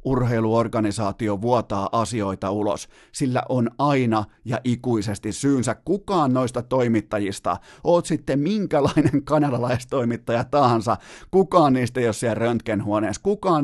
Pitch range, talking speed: 110-140 Hz, 110 wpm